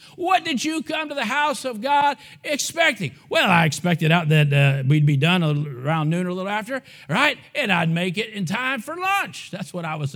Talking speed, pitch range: 225 wpm, 175-285 Hz